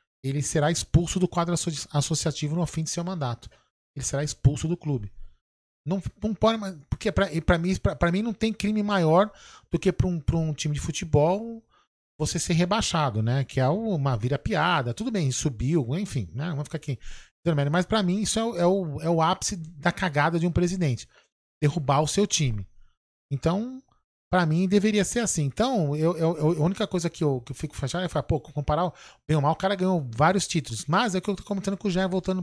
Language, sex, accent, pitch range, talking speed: Portuguese, male, Brazilian, 145-195 Hz, 215 wpm